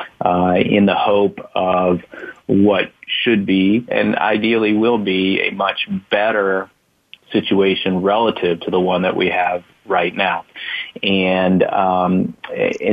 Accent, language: American, English